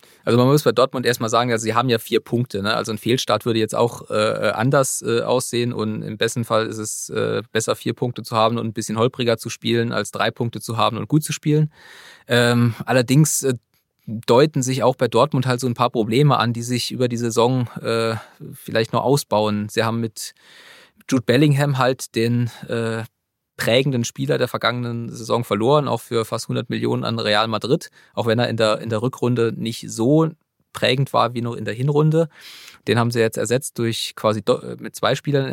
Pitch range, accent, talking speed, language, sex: 110-130 Hz, German, 205 wpm, German, male